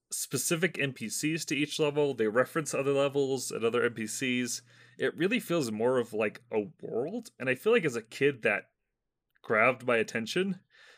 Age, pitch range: 30-49, 110-150 Hz